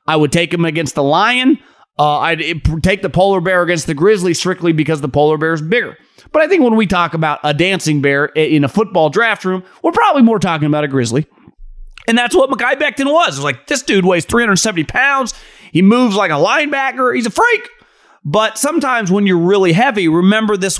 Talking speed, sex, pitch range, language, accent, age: 215 wpm, male, 160-225 Hz, English, American, 30-49